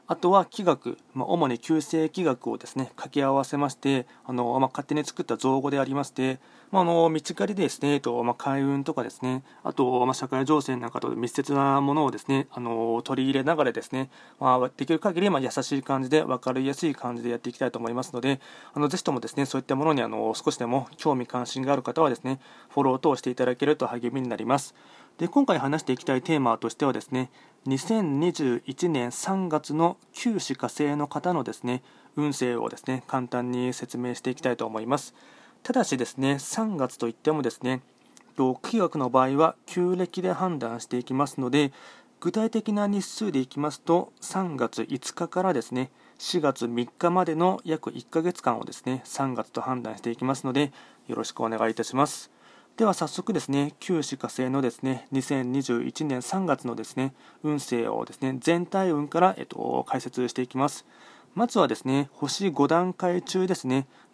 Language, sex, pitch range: Japanese, male, 125-160 Hz